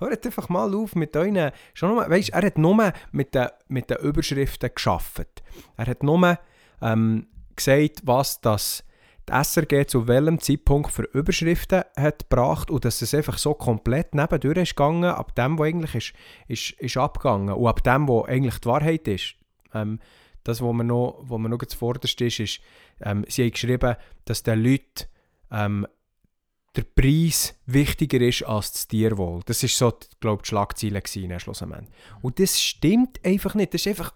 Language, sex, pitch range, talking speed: German, male, 115-150 Hz, 170 wpm